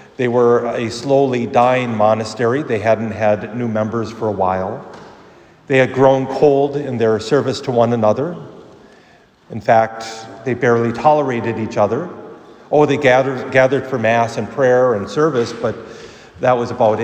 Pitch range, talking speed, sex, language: 115-140 Hz, 160 wpm, male, English